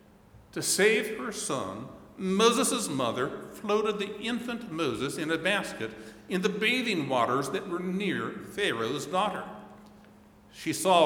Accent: American